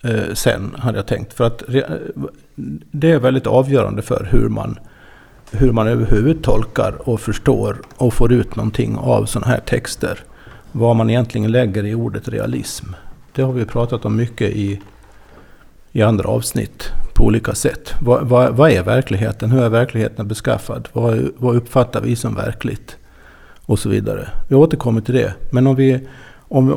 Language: Swedish